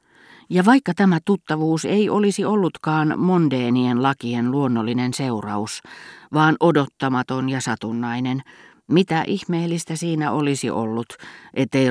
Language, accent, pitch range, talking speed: Finnish, native, 120-150 Hz, 105 wpm